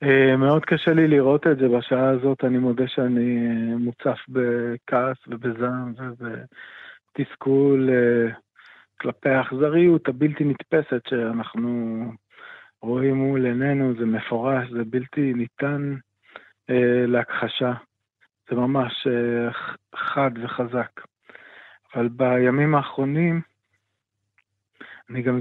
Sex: male